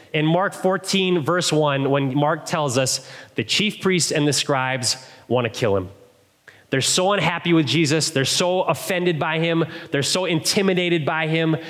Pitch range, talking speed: 130-170 Hz, 175 wpm